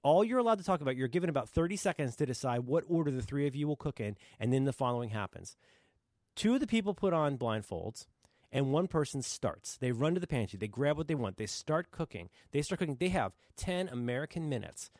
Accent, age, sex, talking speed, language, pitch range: American, 30-49, male, 235 wpm, English, 115-175 Hz